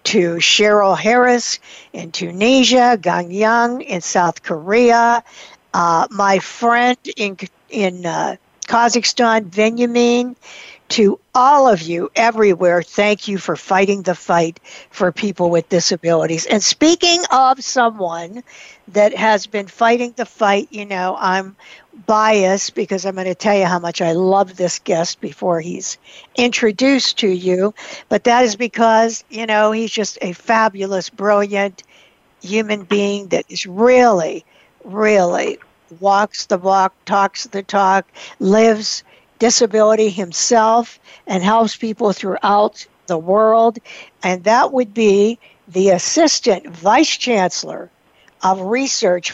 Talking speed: 130 wpm